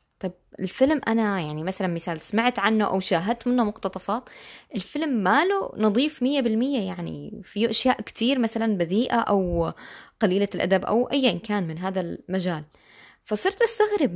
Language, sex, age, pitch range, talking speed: Arabic, female, 20-39, 190-260 Hz, 145 wpm